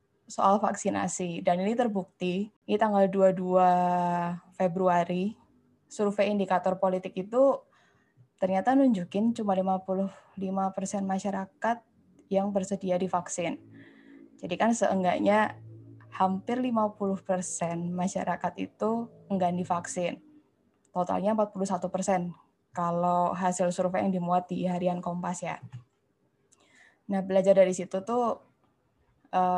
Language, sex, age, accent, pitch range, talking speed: Indonesian, female, 10-29, native, 175-195 Hz, 100 wpm